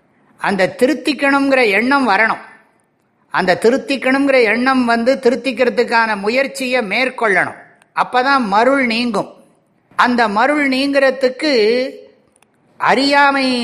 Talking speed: 80 wpm